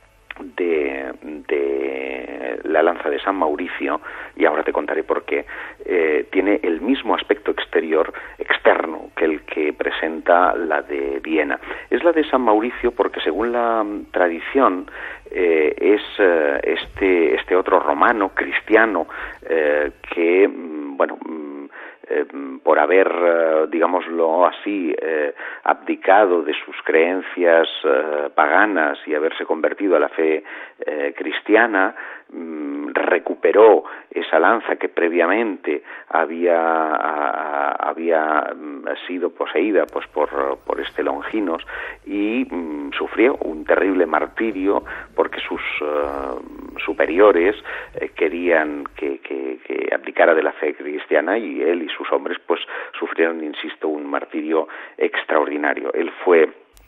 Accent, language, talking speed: Spanish, English, 120 wpm